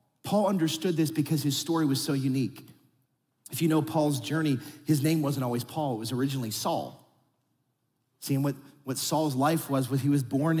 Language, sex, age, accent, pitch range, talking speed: English, male, 30-49, American, 130-180 Hz, 190 wpm